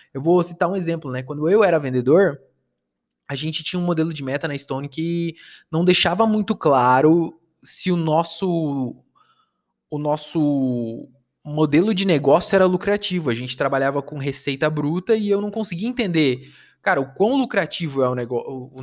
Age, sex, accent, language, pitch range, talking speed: 20-39, male, Brazilian, Portuguese, 140-185 Hz, 165 wpm